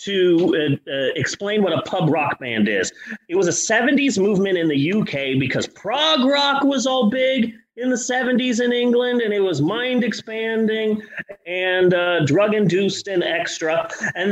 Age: 30-49